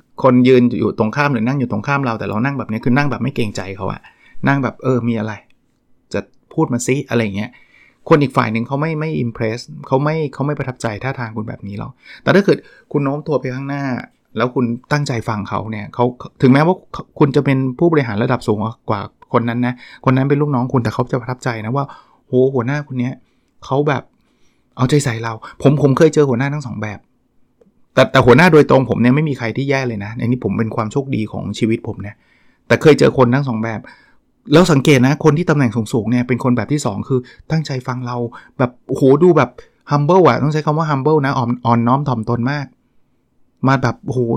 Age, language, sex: 20-39, Thai, male